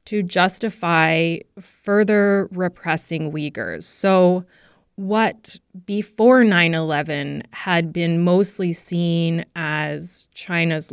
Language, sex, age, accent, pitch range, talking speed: English, female, 20-39, American, 165-205 Hz, 80 wpm